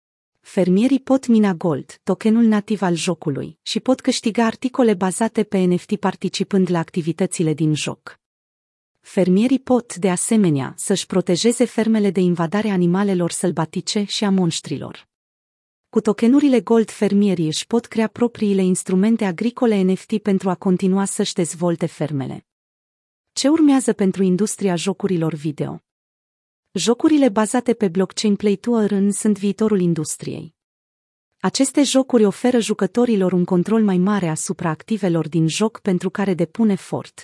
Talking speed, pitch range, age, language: 135 wpm, 175-220 Hz, 30-49, Romanian